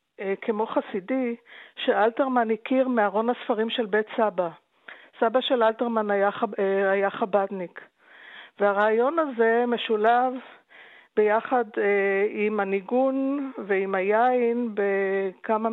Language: Hebrew